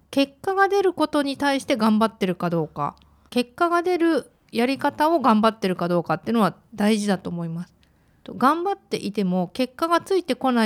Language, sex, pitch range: Japanese, female, 185-255 Hz